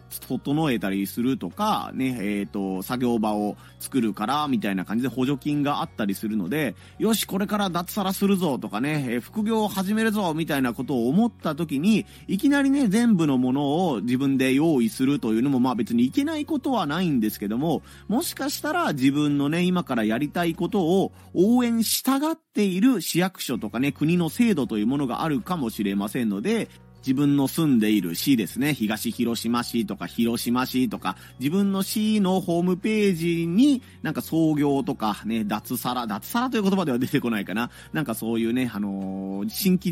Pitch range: 115-195 Hz